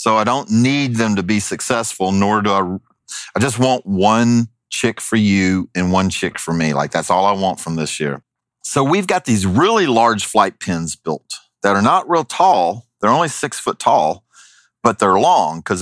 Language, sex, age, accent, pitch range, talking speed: English, male, 40-59, American, 100-130 Hz, 205 wpm